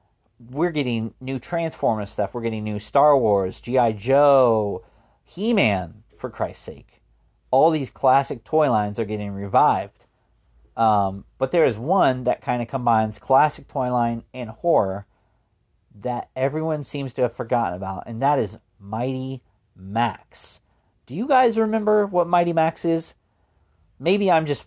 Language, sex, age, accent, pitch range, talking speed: English, male, 40-59, American, 105-130 Hz, 150 wpm